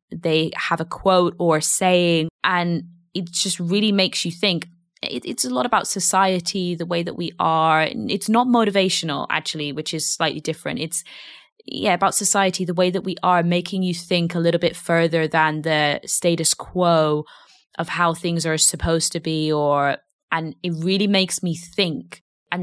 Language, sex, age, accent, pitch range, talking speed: English, female, 20-39, British, 160-185 Hz, 180 wpm